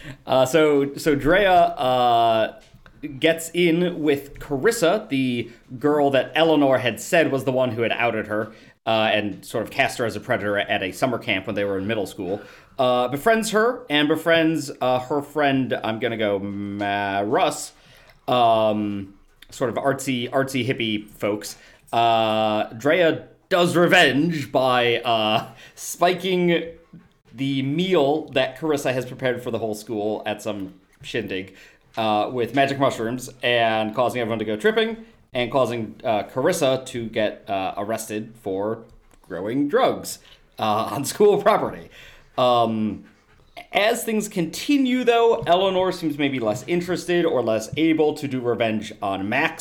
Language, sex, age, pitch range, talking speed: English, male, 30-49, 115-165 Hz, 150 wpm